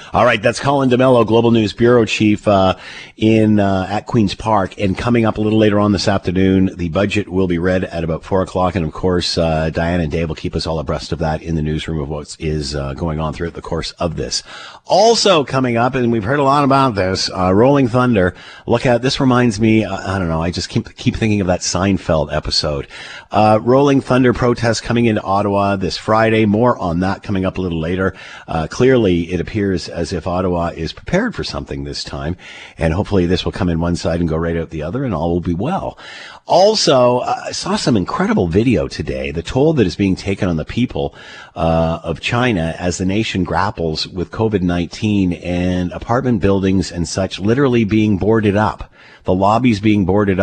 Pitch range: 85-115 Hz